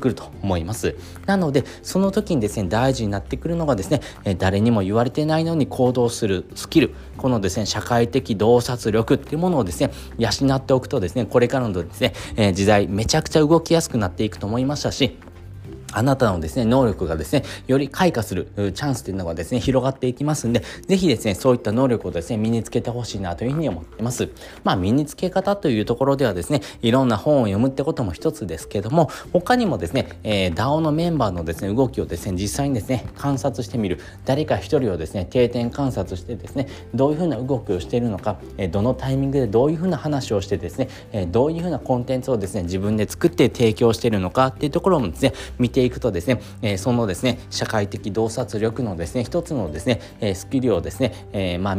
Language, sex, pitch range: Japanese, male, 100-135 Hz